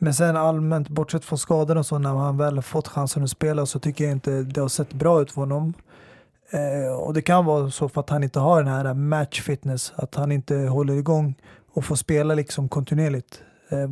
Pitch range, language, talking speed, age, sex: 140-160 Hz, Swedish, 220 wpm, 30-49, male